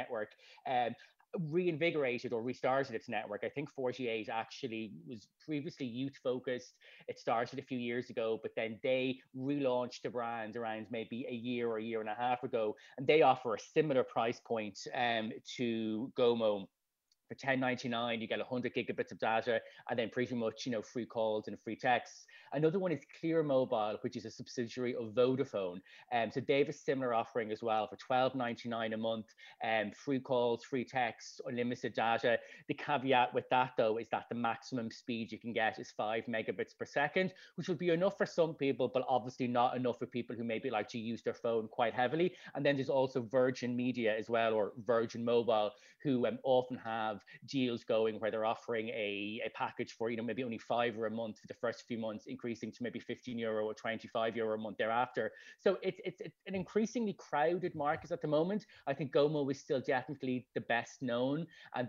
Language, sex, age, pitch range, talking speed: English, male, 30-49, 115-140 Hz, 200 wpm